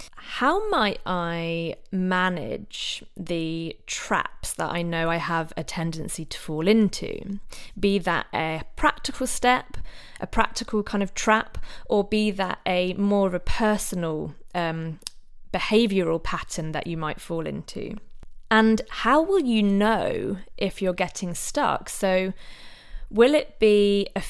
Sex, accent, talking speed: female, British, 140 wpm